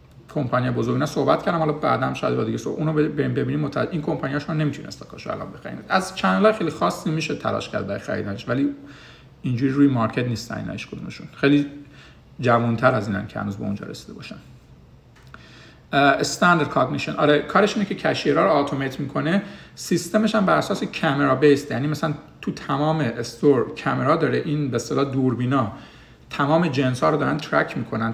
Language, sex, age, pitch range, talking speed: Persian, male, 50-69, 120-155 Hz, 175 wpm